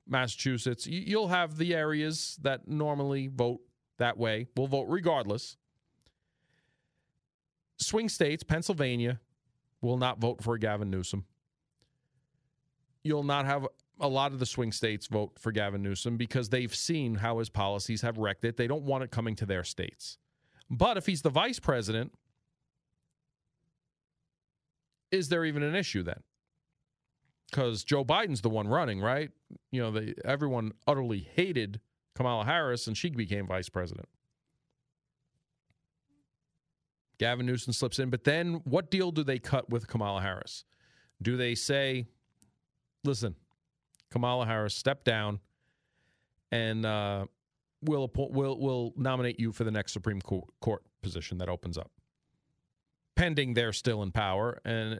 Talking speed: 140 wpm